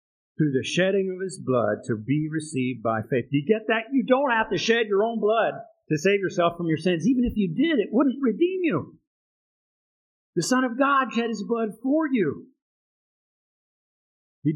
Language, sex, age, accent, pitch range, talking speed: English, male, 50-69, American, 125-195 Hz, 195 wpm